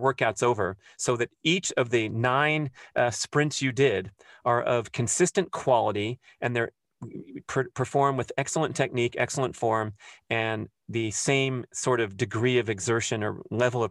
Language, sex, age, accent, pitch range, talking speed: English, male, 30-49, American, 115-140 Hz, 150 wpm